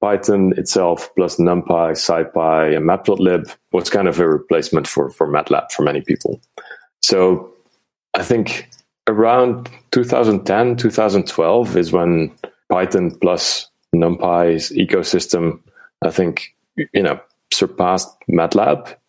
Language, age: English, 30-49